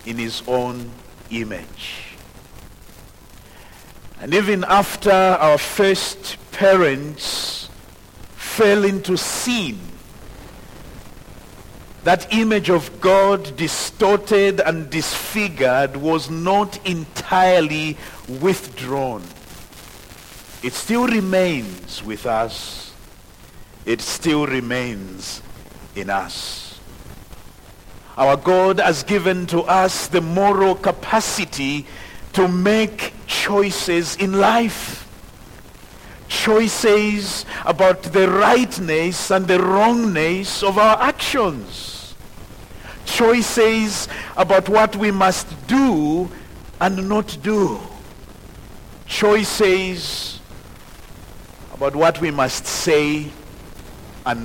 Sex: male